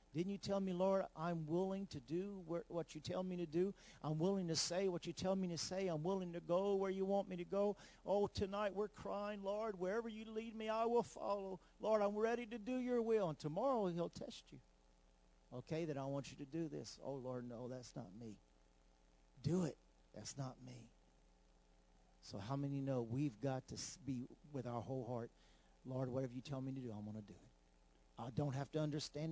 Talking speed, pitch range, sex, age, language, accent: 220 wpm, 125-195 Hz, male, 50-69, English, American